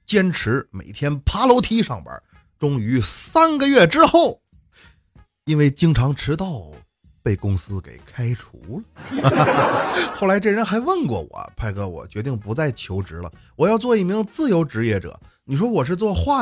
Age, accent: 30-49, native